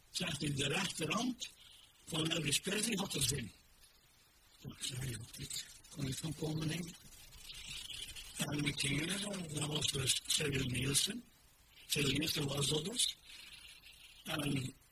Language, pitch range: Dutch, 140-175 Hz